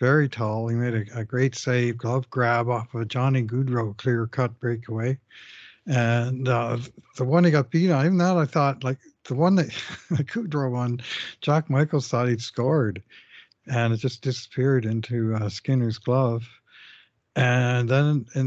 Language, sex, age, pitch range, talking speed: English, male, 60-79, 120-145 Hz, 170 wpm